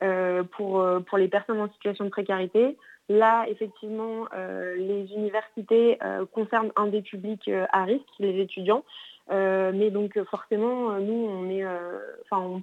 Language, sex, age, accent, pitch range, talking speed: French, female, 20-39, French, 195-220 Hz, 145 wpm